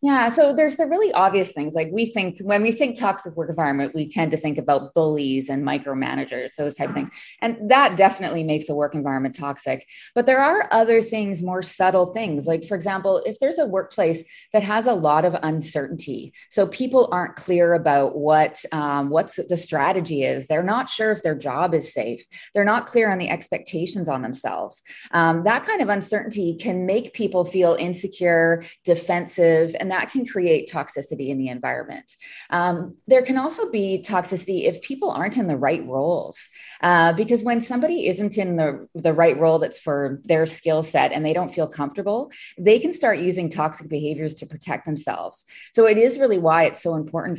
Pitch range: 155-210 Hz